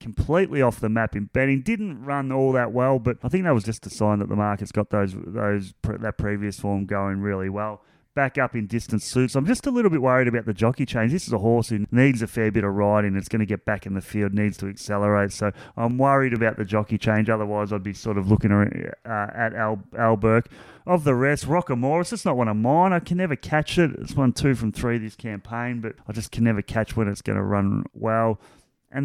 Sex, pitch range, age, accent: male, 105-130 Hz, 30-49, Australian